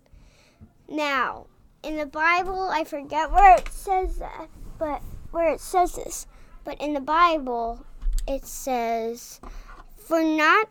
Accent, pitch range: American, 260-335 Hz